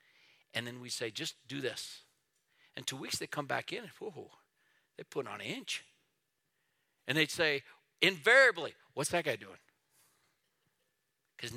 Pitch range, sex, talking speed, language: 160-220 Hz, male, 155 wpm, English